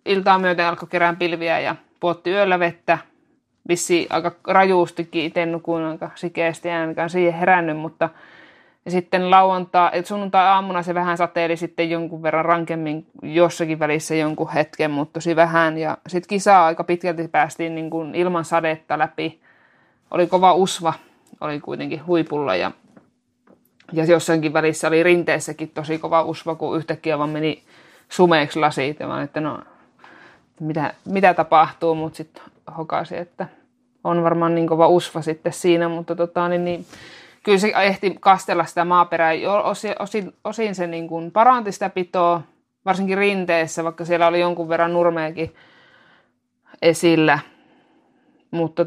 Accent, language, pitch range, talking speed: native, Finnish, 160-175 Hz, 140 wpm